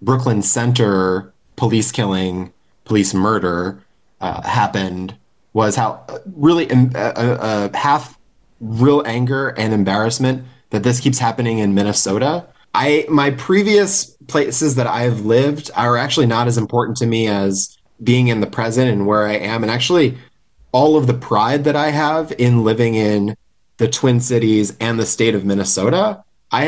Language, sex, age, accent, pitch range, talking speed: English, male, 20-39, American, 100-130 Hz, 155 wpm